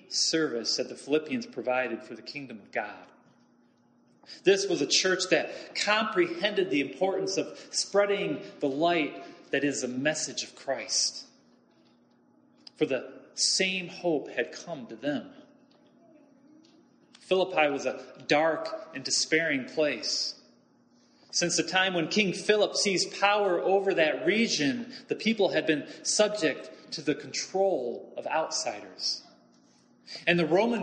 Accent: American